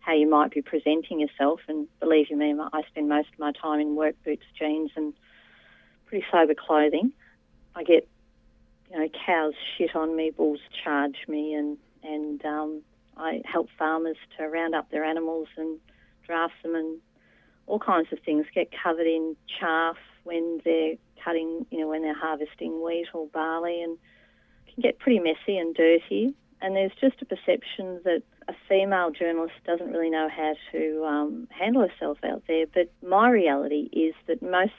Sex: female